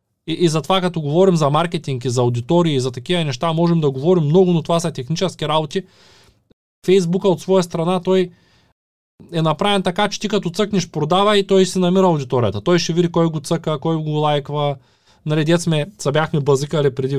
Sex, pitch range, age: male, 135-185 Hz, 20-39